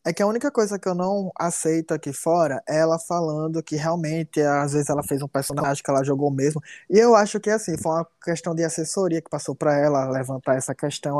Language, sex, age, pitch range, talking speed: Portuguese, male, 20-39, 150-205 Hz, 230 wpm